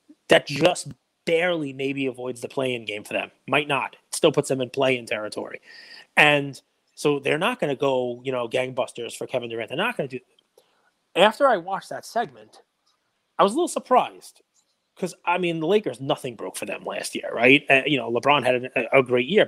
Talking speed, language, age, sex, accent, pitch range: 210 wpm, English, 30-49, male, American, 125-170 Hz